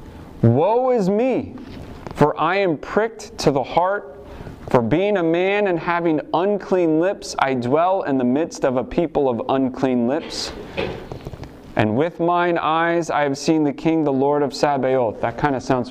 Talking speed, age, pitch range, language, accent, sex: 175 wpm, 30-49, 125-175 Hz, English, American, male